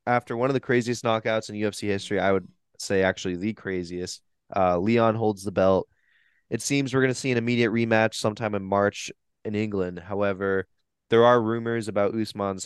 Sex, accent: male, American